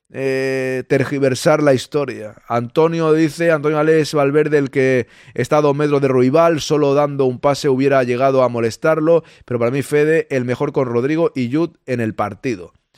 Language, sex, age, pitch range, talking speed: Spanish, male, 20-39, 125-150 Hz, 170 wpm